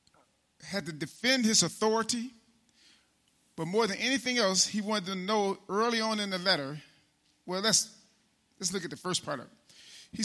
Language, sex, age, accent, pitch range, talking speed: English, male, 40-59, American, 165-220 Hz, 175 wpm